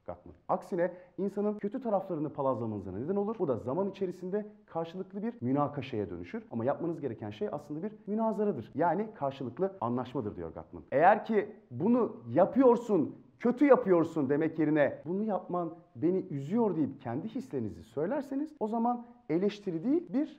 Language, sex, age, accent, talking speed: Turkish, male, 40-59, native, 145 wpm